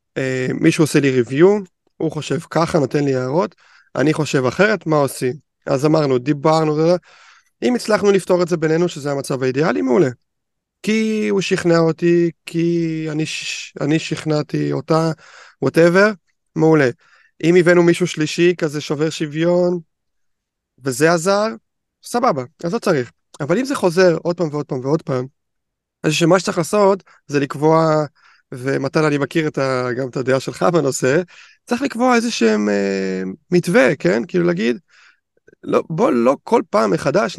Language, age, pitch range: Hebrew, 30-49, 145-180 Hz